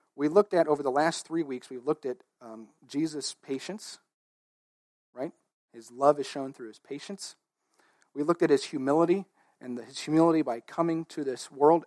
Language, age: English, 40-59